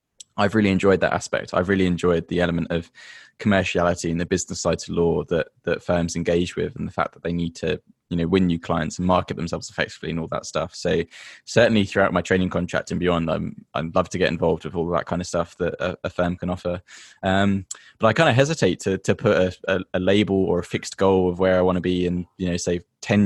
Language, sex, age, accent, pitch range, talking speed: English, male, 10-29, British, 85-95 Hz, 250 wpm